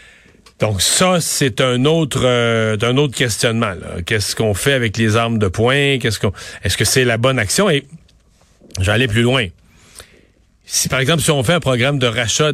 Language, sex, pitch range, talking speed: French, male, 110-145 Hz, 200 wpm